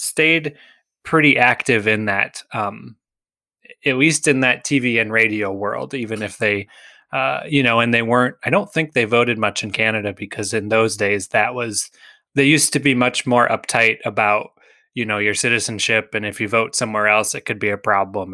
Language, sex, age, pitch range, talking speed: English, male, 20-39, 105-130 Hz, 195 wpm